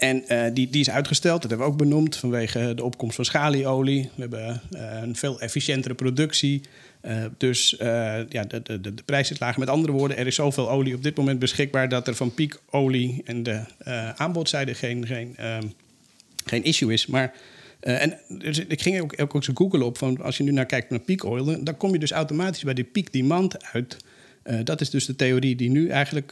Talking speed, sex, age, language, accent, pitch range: 215 wpm, male, 40-59, Dutch, Dutch, 120-145 Hz